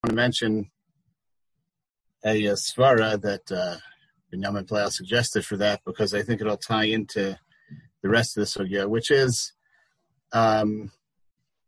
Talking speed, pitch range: 145 wpm, 105-135 Hz